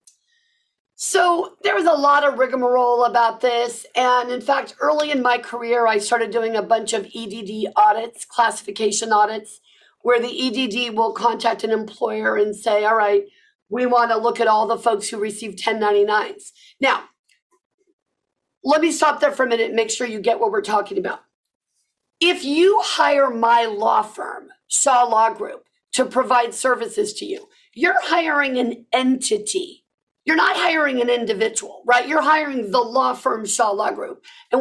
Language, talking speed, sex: English, 170 wpm, female